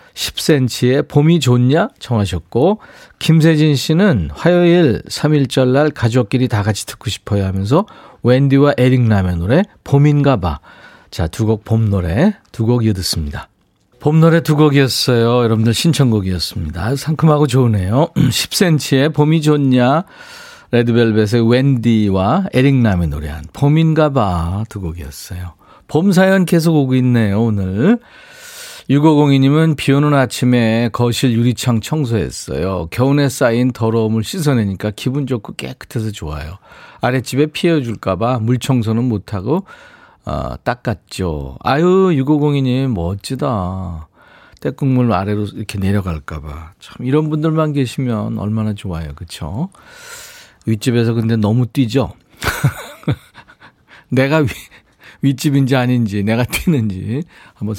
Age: 40-59